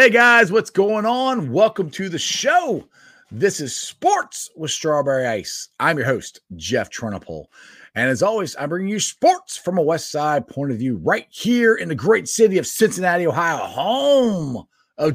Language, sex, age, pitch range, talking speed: English, male, 30-49, 130-200 Hz, 180 wpm